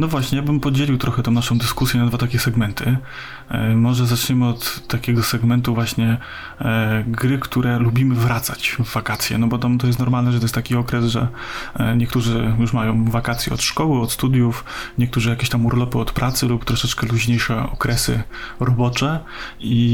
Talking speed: 180 wpm